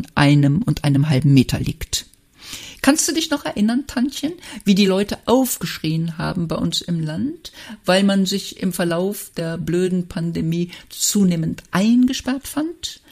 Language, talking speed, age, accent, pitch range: German, 145 wpm, 50-69, German, 155-230 Hz